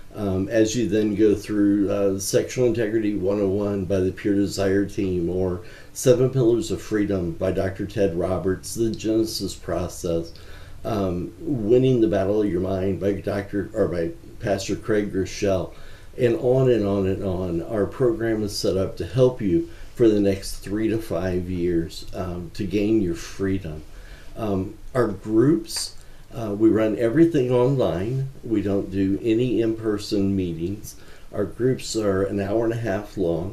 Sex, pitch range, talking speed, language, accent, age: male, 95-110 Hz, 160 wpm, English, American, 50-69